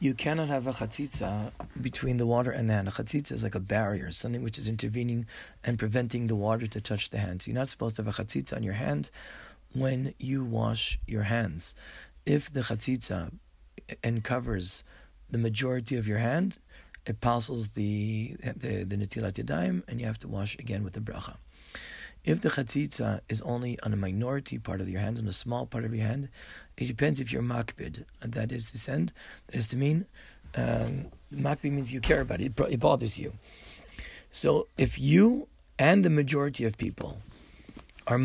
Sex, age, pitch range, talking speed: male, 40-59, 110-135 Hz, 190 wpm